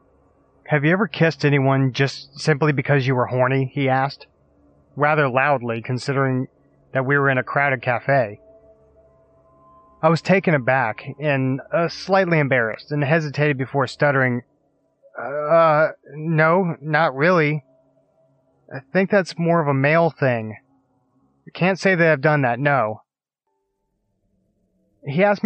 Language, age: English, 30-49